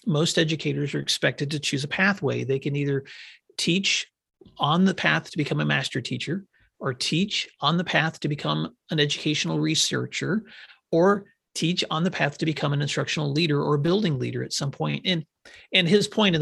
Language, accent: English, American